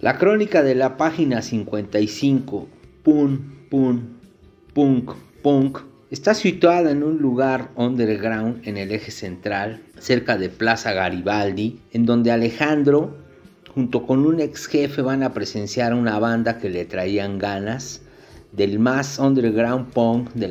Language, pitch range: Spanish, 105-130 Hz